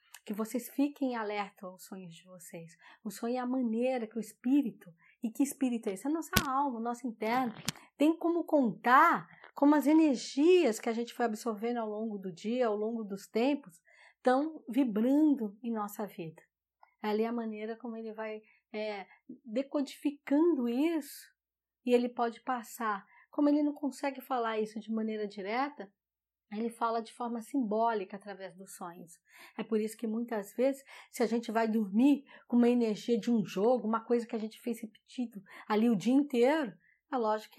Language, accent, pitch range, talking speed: Portuguese, Brazilian, 215-260 Hz, 180 wpm